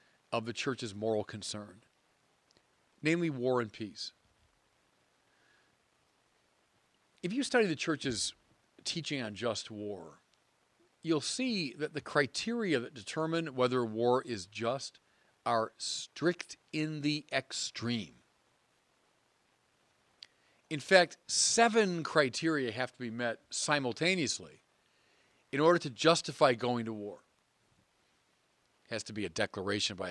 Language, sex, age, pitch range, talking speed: English, male, 40-59, 110-155 Hz, 110 wpm